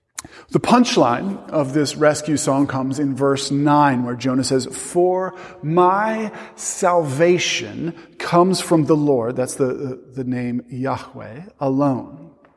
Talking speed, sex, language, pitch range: 125 wpm, male, English, 140-175 Hz